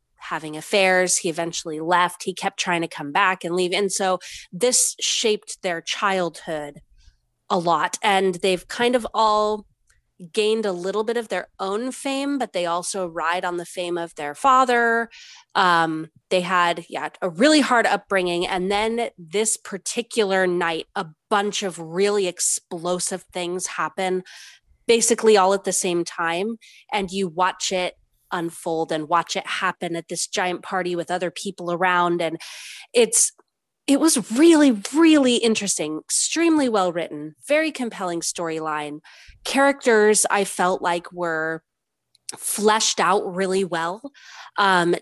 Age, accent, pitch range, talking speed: 20-39, American, 170-210 Hz, 145 wpm